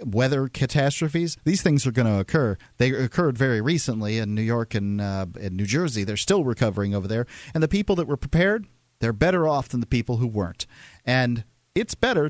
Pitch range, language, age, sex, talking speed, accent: 110-145 Hz, English, 40-59, male, 205 wpm, American